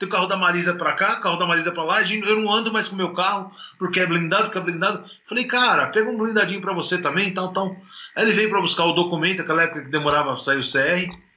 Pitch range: 165-190 Hz